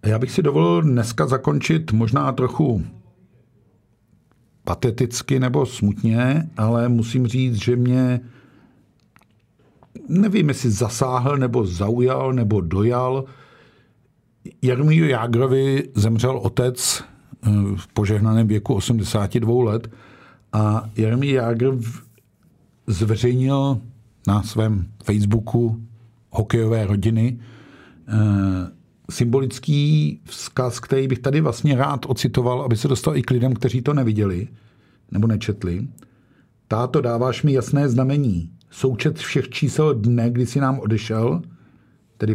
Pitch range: 110-130 Hz